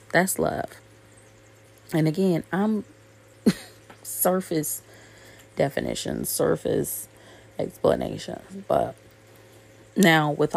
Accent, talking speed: American, 70 wpm